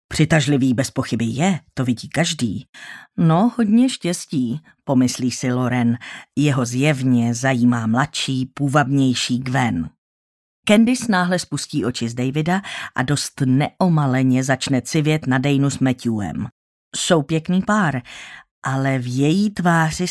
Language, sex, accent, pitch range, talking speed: Czech, female, native, 130-175 Hz, 120 wpm